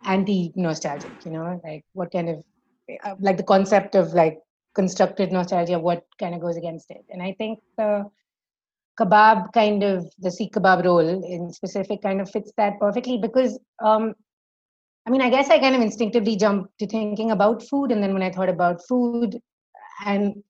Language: English